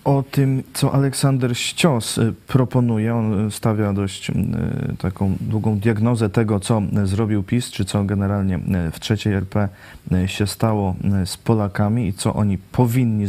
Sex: male